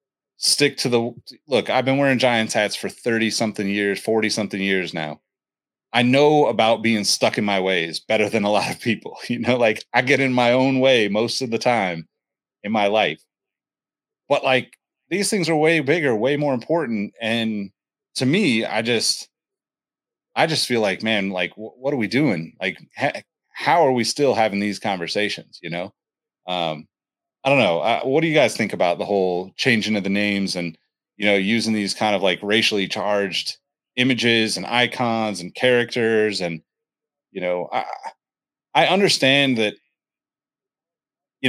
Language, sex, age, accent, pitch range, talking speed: English, male, 30-49, American, 95-120 Hz, 175 wpm